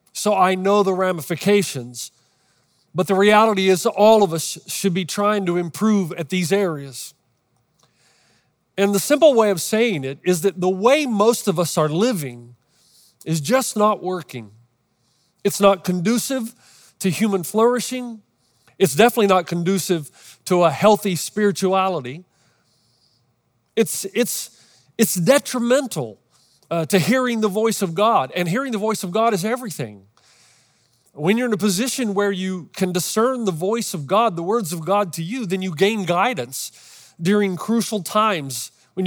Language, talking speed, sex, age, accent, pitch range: English, 155 wpm, male, 40-59, American, 160-215 Hz